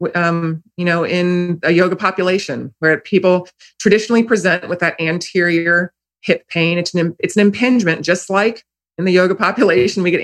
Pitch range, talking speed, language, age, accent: 160-200 Hz, 170 wpm, English, 30-49, American